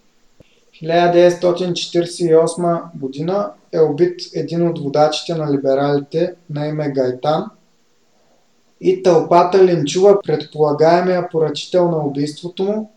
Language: Bulgarian